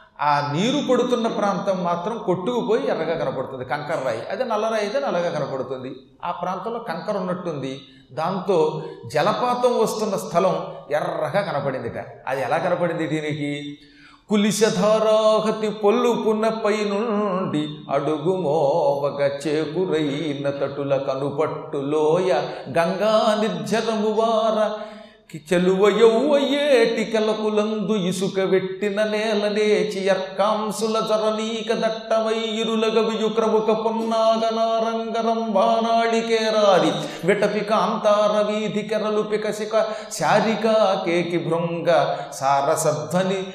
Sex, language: male, Telugu